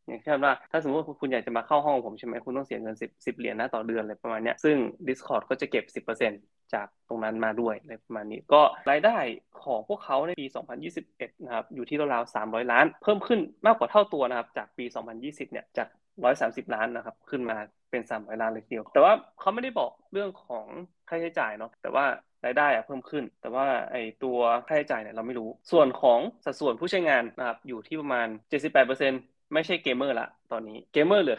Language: Thai